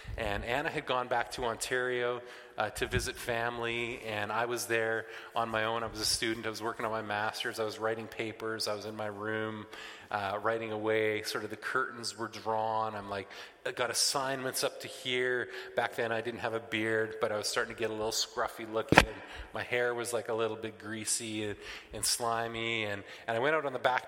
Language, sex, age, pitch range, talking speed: English, male, 30-49, 110-120 Hz, 225 wpm